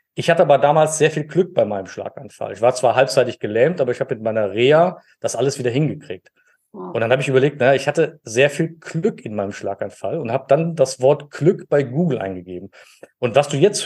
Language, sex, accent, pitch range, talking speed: German, male, German, 135-175 Hz, 225 wpm